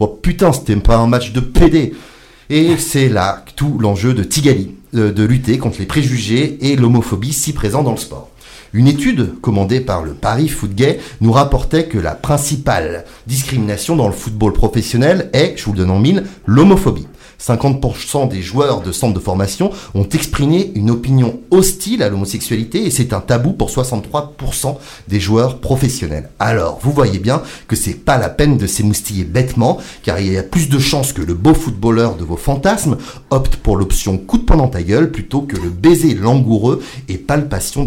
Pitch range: 105-140 Hz